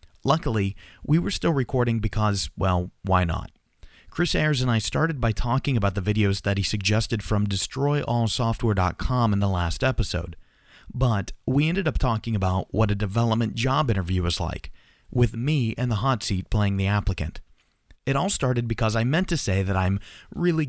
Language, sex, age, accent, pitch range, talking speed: English, male, 30-49, American, 95-130 Hz, 175 wpm